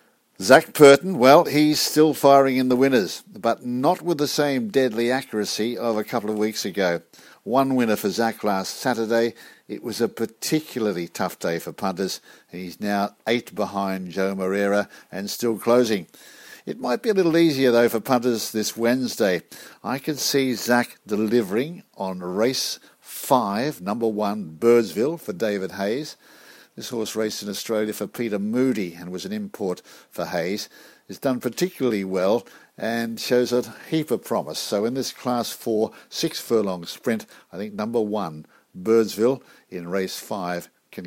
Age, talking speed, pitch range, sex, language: 50-69, 160 wpm, 105-130 Hz, male, English